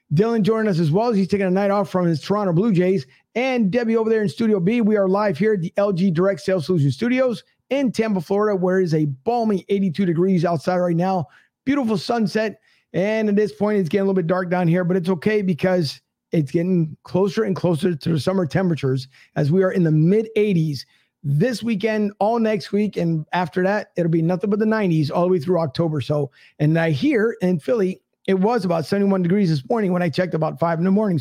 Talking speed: 230 wpm